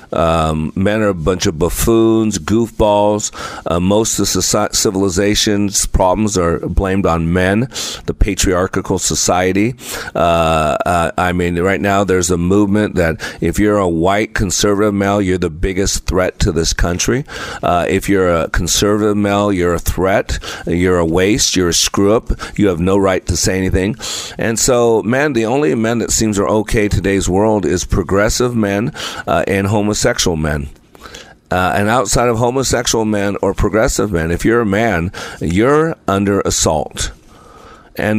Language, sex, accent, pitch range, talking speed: English, male, American, 90-110 Hz, 160 wpm